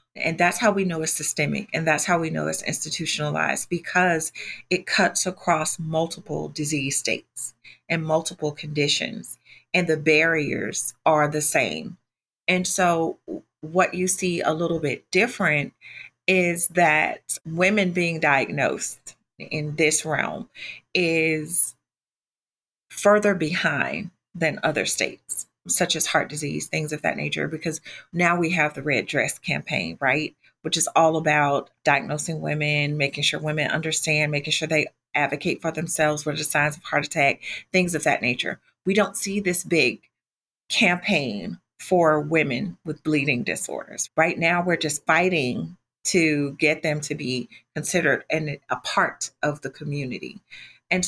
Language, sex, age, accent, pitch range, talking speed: English, female, 30-49, American, 150-175 Hz, 150 wpm